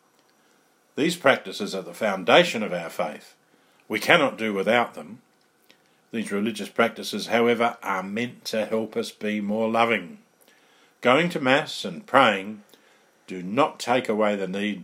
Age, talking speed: 50-69, 145 wpm